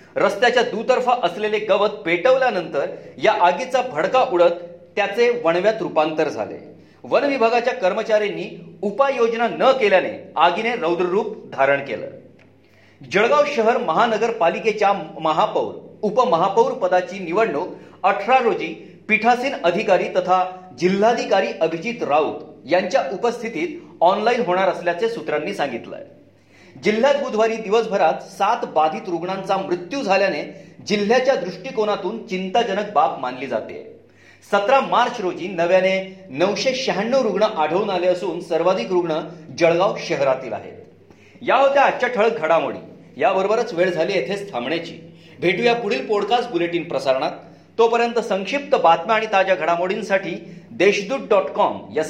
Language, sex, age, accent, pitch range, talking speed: Marathi, male, 40-59, native, 175-230 Hz, 110 wpm